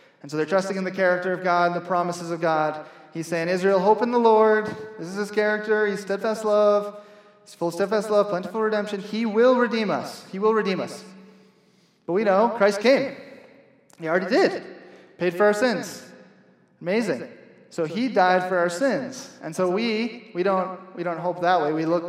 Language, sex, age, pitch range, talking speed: English, male, 30-49, 160-205 Hz, 200 wpm